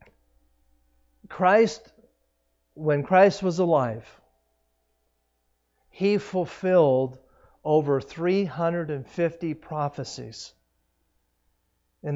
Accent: American